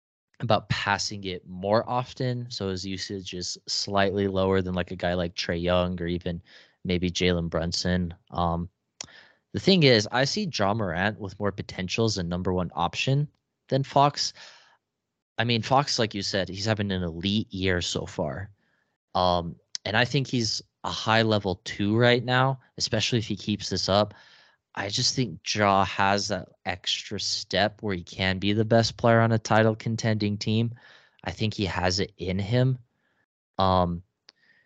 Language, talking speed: English, 170 wpm